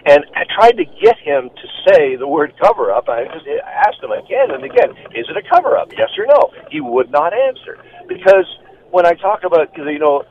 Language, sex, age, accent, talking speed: English, male, 50-69, American, 205 wpm